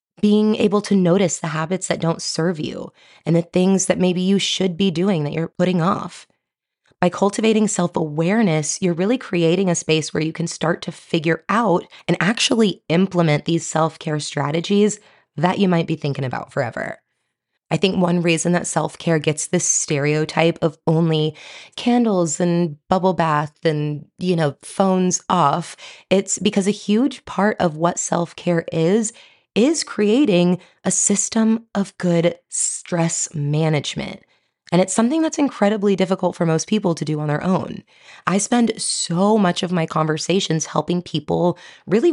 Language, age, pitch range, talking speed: English, 20-39, 165-200 Hz, 160 wpm